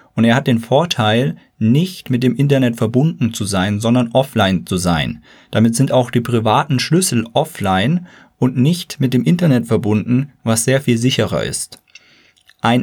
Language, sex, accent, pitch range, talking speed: German, male, German, 115-140 Hz, 165 wpm